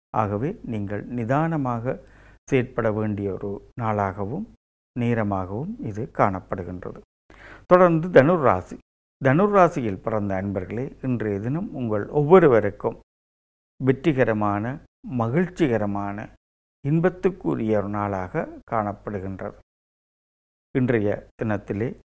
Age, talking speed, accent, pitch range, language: 50-69, 75 wpm, native, 100-140 Hz, Tamil